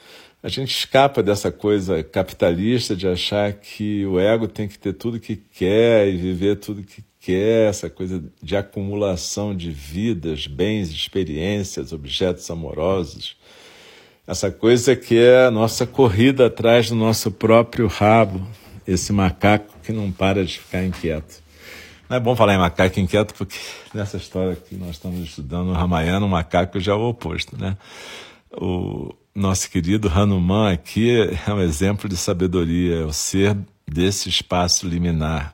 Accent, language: Brazilian, Portuguese